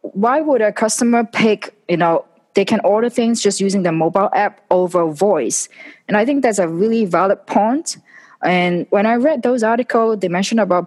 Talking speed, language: 195 wpm, English